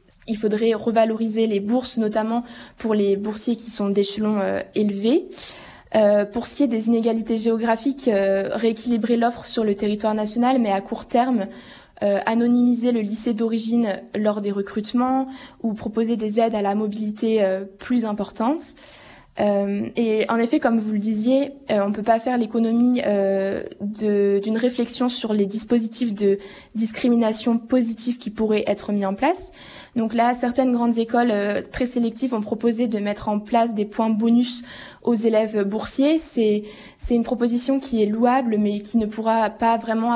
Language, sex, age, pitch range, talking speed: French, female, 20-39, 210-240 Hz, 165 wpm